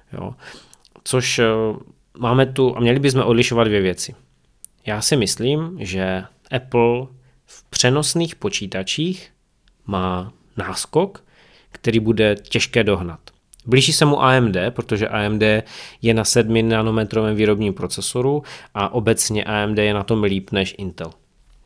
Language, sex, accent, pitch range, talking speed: Czech, male, native, 100-120 Hz, 125 wpm